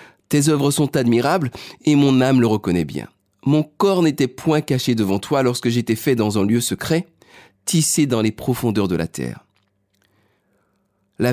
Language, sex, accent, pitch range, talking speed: French, male, French, 105-145 Hz, 170 wpm